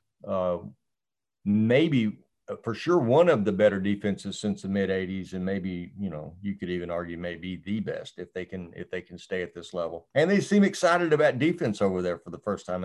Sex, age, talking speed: male, 50-69, 220 wpm